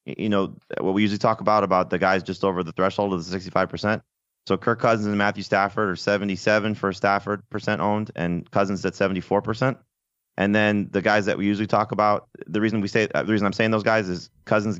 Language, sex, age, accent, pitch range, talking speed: English, male, 30-49, American, 95-110 Hz, 220 wpm